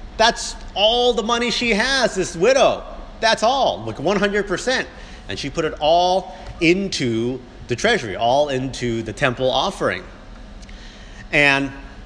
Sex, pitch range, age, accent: male, 110-150 Hz, 30-49, American